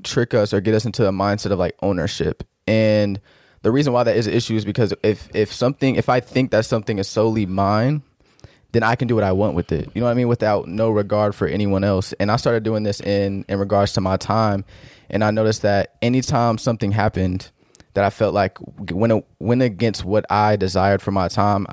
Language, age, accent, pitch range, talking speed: English, 20-39, American, 100-115 Hz, 225 wpm